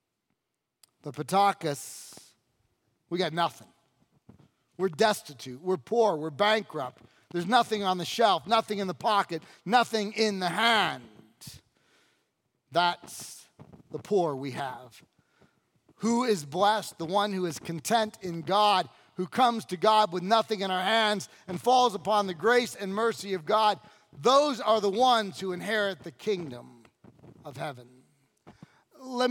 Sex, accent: male, American